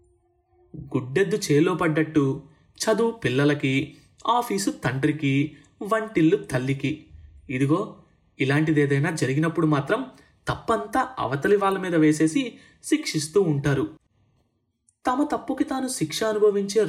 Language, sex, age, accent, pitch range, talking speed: Telugu, male, 30-49, native, 140-195 Hz, 90 wpm